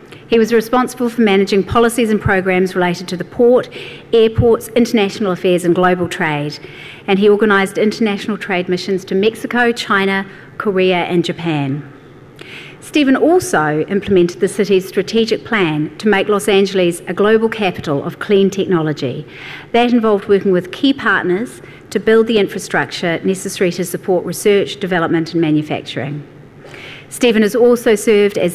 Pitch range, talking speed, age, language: 165-215 Hz, 145 wpm, 40-59, English